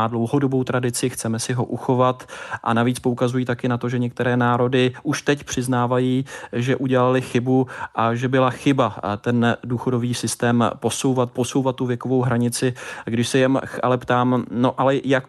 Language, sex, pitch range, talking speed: Czech, male, 120-130 Hz, 165 wpm